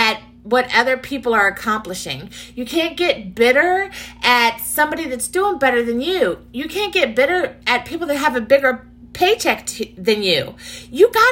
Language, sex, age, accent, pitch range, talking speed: English, female, 30-49, American, 245-360 Hz, 170 wpm